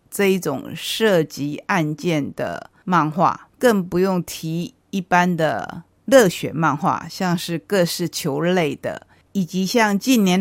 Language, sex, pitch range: Chinese, female, 155-190 Hz